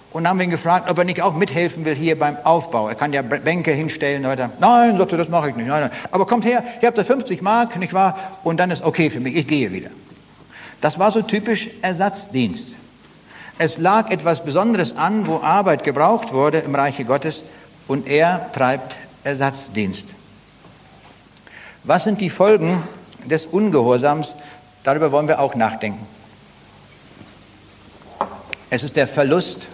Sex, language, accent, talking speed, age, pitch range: male, German, German, 170 wpm, 60-79, 135-180 Hz